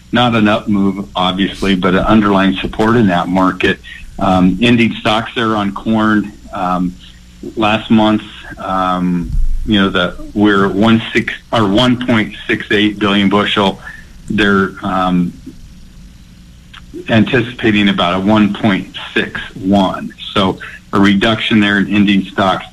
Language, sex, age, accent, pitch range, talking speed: English, male, 50-69, American, 95-110 Hz, 120 wpm